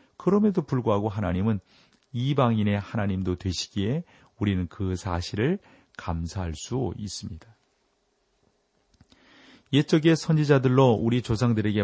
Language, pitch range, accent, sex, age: Korean, 90-125 Hz, native, male, 40-59